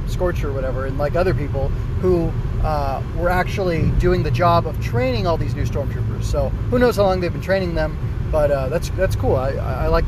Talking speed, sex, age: 220 wpm, male, 30-49